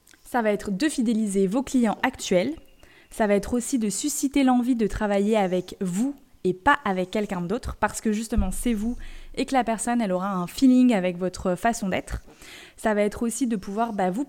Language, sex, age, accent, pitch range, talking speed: French, female, 20-39, French, 195-245 Hz, 205 wpm